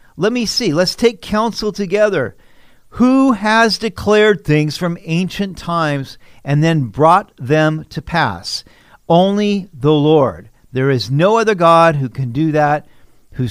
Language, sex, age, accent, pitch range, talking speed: English, male, 50-69, American, 135-195 Hz, 145 wpm